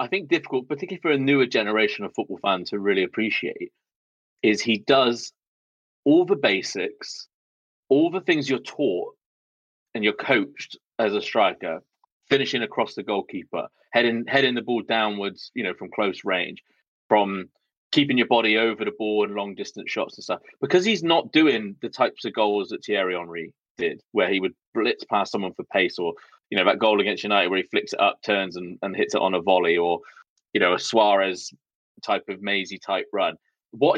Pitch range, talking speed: 105-165 Hz, 190 wpm